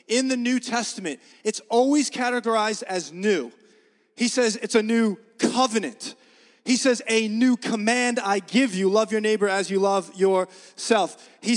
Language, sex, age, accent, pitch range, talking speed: English, male, 30-49, American, 225-270 Hz, 160 wpm